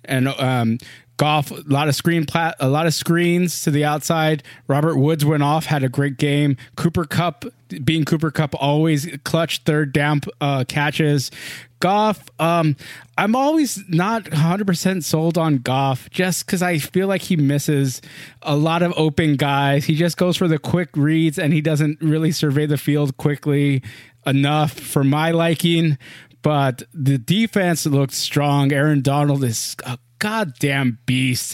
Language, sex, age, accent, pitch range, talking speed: English, male, 20-39, American, 135-160 Hz, 165 wpm